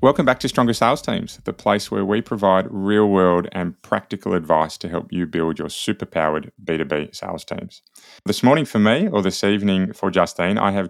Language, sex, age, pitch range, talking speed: English, male, 20-39, 85-100 Hz, 195 wpm